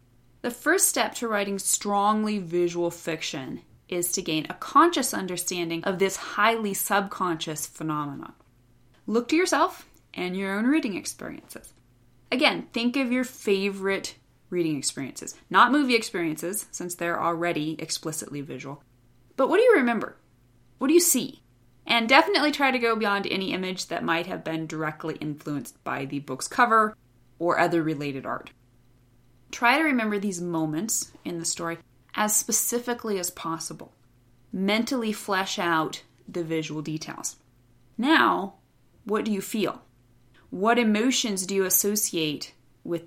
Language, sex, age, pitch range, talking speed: English, female, 20-39, 150-220 Hz, 140 wpm